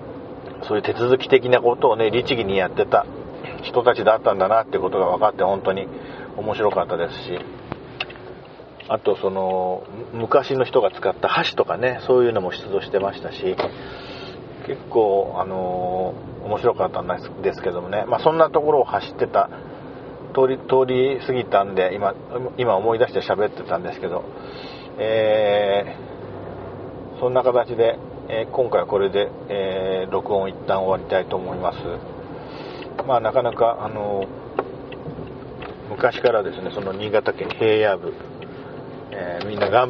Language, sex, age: Japanese, male, 40-59